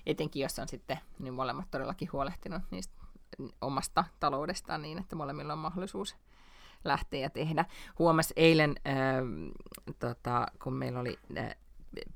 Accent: native